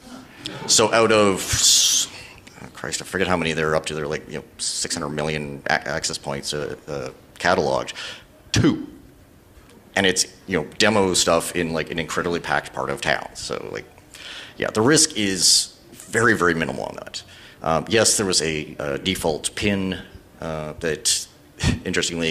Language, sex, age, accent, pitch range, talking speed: English, male, 40-59, American, 75-95 Hz, 155 wpm